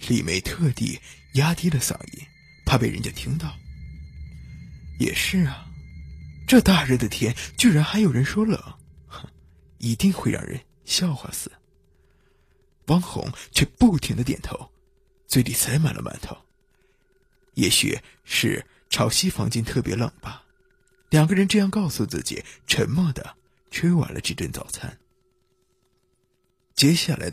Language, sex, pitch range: Chinese, male, 105-150 Hz